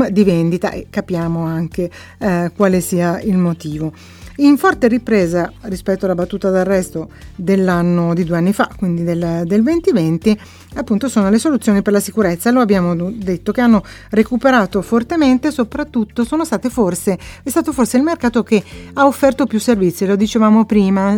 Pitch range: 180-235 Hz